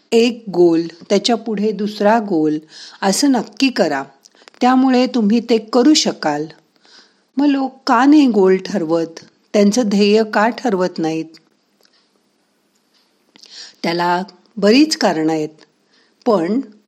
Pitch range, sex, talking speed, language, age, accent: 170-235 Hz, female, 105 wpm, Marathi, 50-69, native